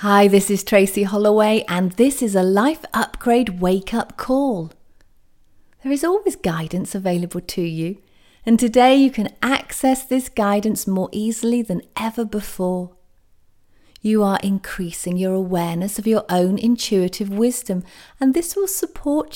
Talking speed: 145 wpm